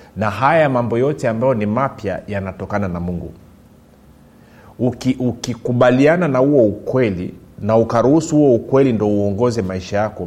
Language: Swahili